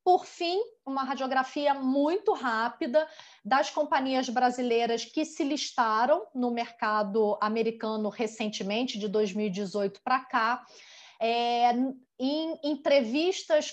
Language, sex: Portuguese, female